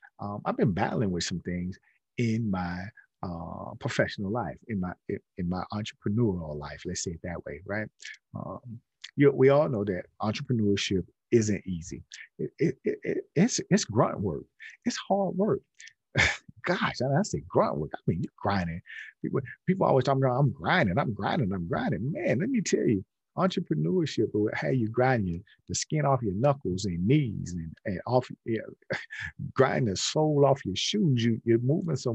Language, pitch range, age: English, 100-140 Hz, 40-59